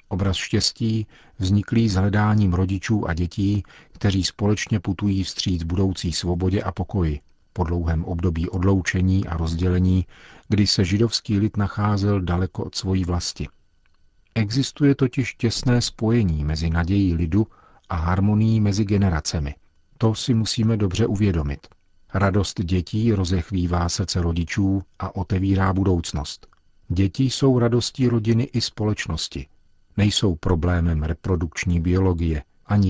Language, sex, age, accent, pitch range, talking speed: Czech, male, 40-59, native, 85-105 Hz, 120 wpm